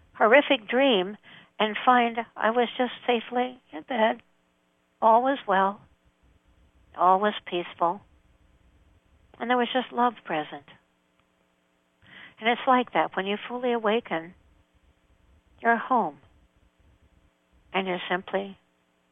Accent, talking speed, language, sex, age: American, 110 wpm, English, female, 60-79